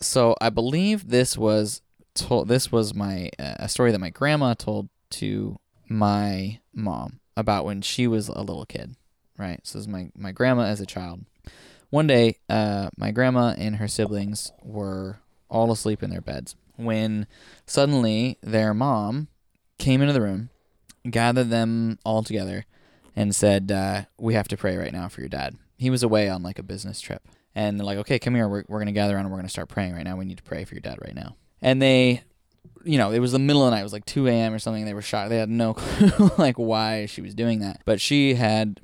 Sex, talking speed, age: male, 225 wpm, 10-29